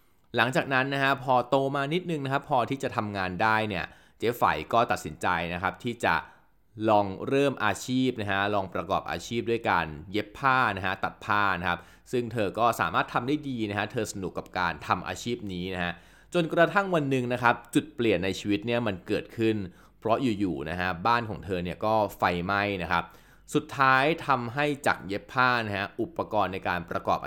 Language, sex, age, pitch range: Thai, male, 20-39, 95-130 Hz